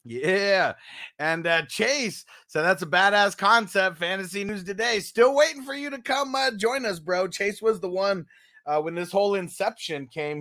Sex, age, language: male, 30-49, English